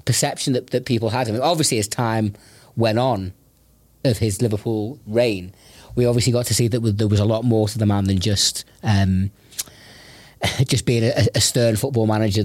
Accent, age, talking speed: British, 40-59, 195 wpm